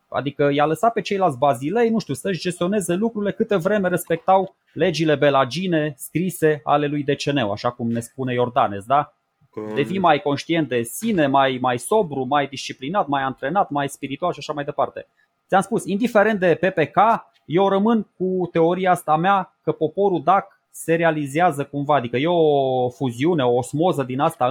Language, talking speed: Romanian, 170 wpm